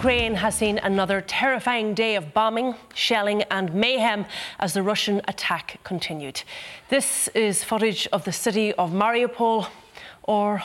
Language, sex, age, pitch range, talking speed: English, female, 30-49, 190-230 Hz, 140 wpm